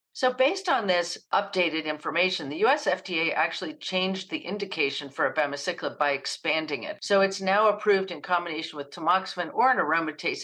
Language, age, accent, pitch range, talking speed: English, 50-69, American, 150-195 Hz, 165 wpm